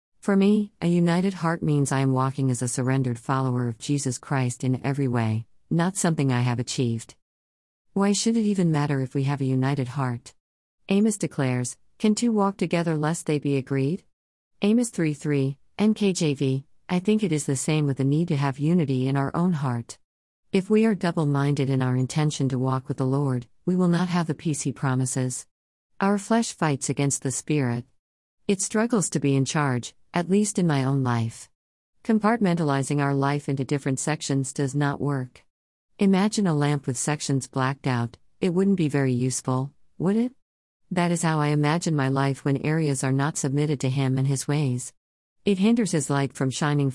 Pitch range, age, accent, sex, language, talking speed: 130-170 Hz, 50-69, American, female, English, 190 wpm